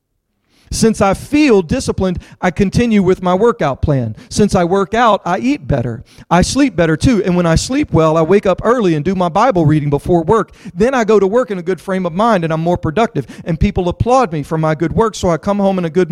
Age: 40-59